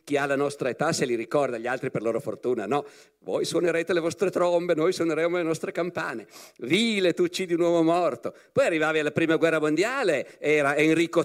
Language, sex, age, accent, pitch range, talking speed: Italian, male, 50-69, native, 125-170 Hz, 205 wpm